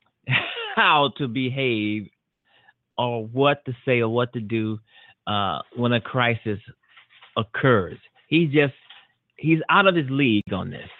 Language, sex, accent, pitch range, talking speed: English, male, American, 115-145 Hz, 135 wpm